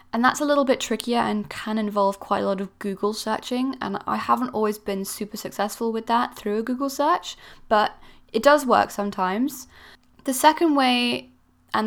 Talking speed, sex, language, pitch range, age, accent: 185 wpm, female, English, 190-240 Hz, 10-29, British